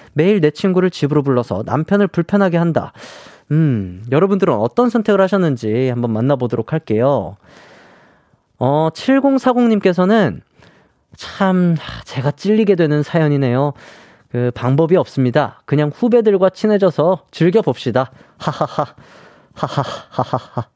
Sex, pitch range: male, 125-185 Hz